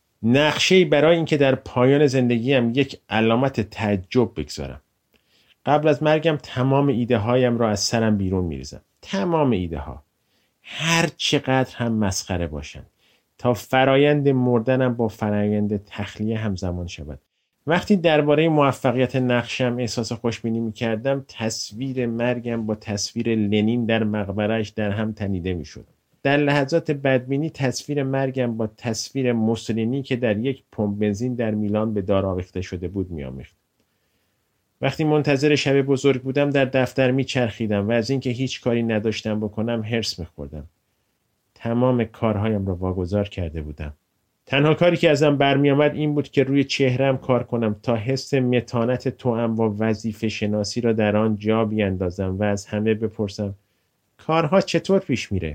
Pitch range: 105-135 Hz